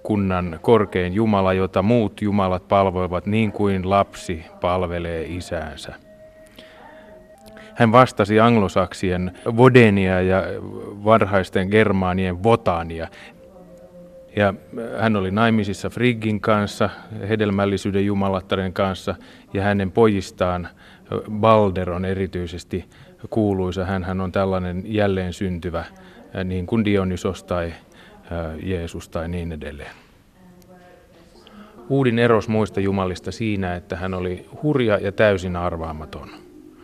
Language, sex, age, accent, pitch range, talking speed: Finnish, male, 30-49, native, 90-110 Hz, 100 wpm